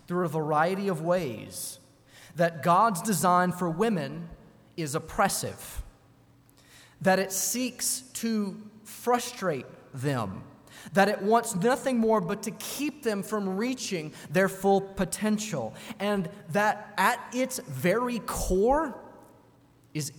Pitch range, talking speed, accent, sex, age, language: 140-210 Hz, 115 wpm, American, male, 30-49, English